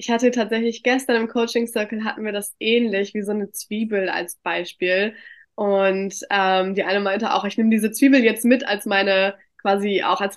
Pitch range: 195-230 Hz